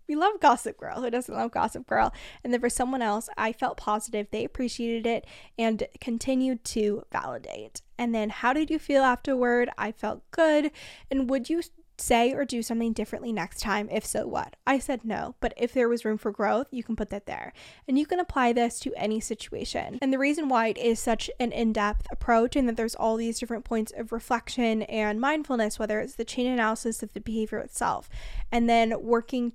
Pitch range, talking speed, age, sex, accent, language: 220-250 Hz, 210 wpm, 10-29, female, American, English